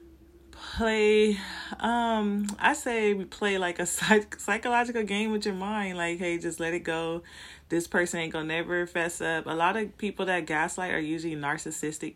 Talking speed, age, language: 170 wpm, 20-39, English